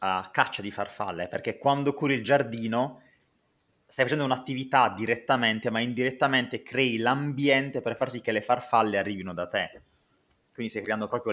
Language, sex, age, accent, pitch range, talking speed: Italian, male, 30-49, native, 100-130 Hz, 155 wpm